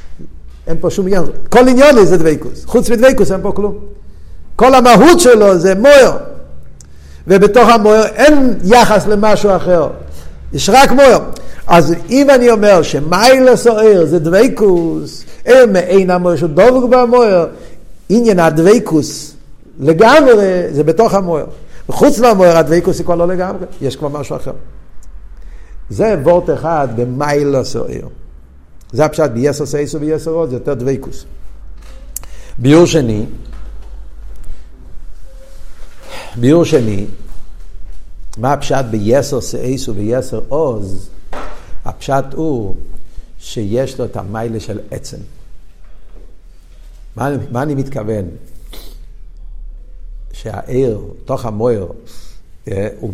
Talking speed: 110 wpm